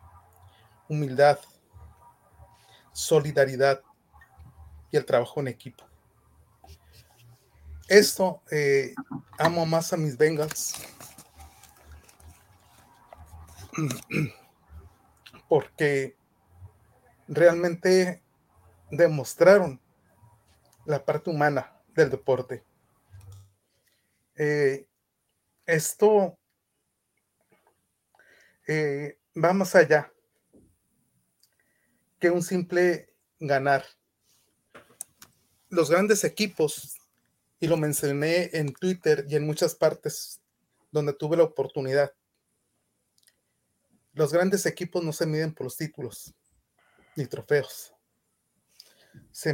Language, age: Spanish, 30-49